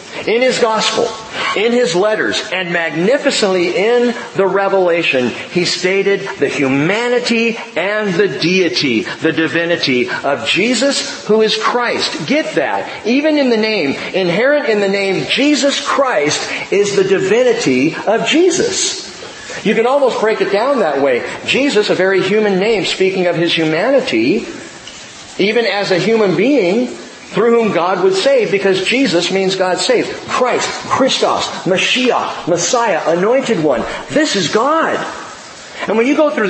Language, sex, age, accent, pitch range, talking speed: English, male, 50-69, American, 185-280 Hz, 145 wpm